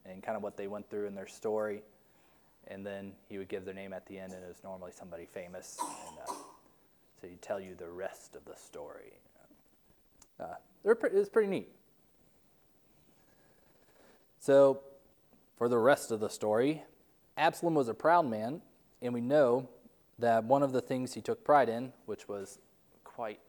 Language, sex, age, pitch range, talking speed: English, male, 20-39, 105-145 Hz, 175 wpm